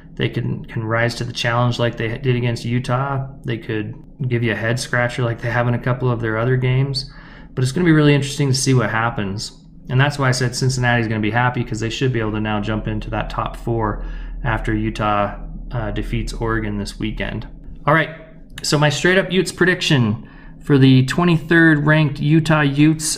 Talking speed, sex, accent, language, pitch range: 210 wpm, male, American, English, 115-150 Hz